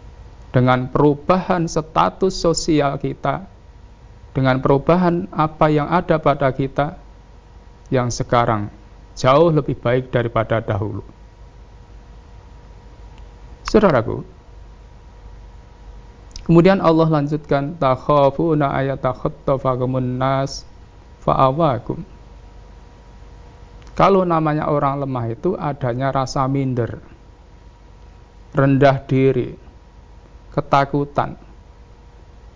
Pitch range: 95-150 Hz